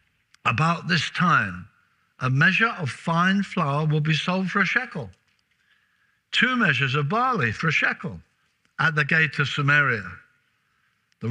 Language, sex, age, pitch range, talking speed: English, male, 60-79, 135-185 Hz, 145 wpm